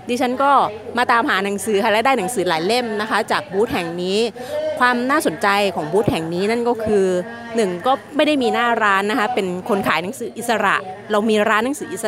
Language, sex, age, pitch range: Thai, female, 30-49, 190-235 Hz